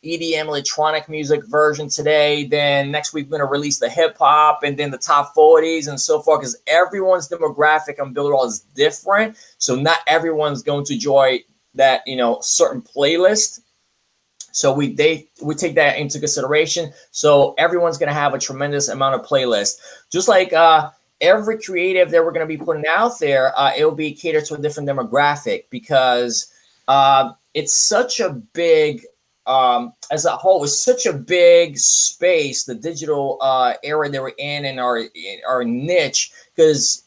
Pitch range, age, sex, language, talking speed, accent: 140-170 Hz, 20-39, male, English, 175 wpm, American